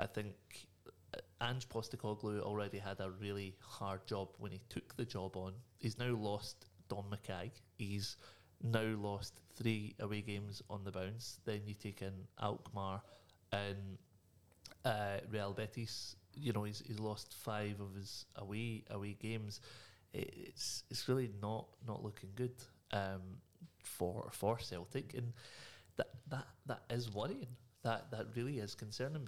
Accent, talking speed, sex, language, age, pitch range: British, 150 wpm, male, English, 30-49, 100-120 Hz